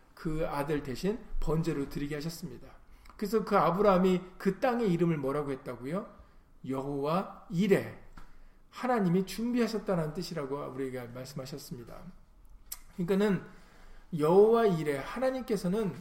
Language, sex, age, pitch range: Korean, male, 40-59, 155-225 Hz